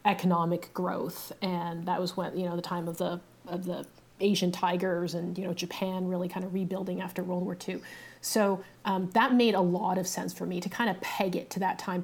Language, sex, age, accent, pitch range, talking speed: English, female, 30-49, American, 180-195 Hz, 230 wpm